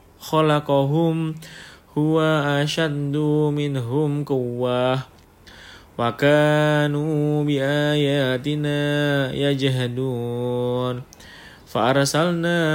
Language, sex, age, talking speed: Indonesian, male, 20-39, 60 wpm